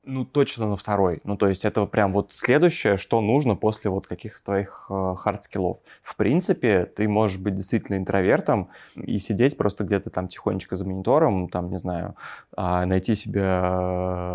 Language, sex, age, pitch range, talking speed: Russian, male, 20-39, 95-105 Hz, 160 wpm